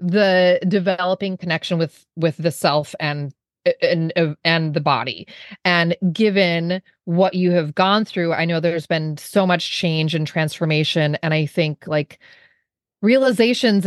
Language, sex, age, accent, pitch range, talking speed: English, female, 30-49, American, 170-210 Hz, 145 wpm